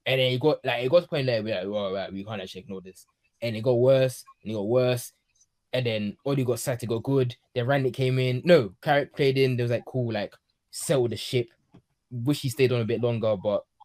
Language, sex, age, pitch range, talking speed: English, male, 20-39, 105-130 Hz, 260 wpm